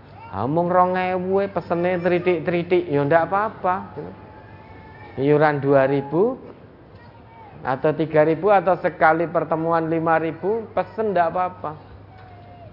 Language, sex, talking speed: Indonesian, male, 90 wpm